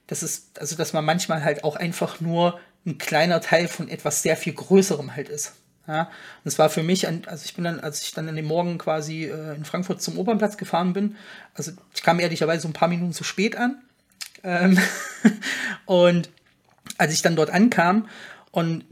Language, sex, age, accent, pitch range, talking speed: German, male, 30-49, German, 155-185 Hz, 200 wpm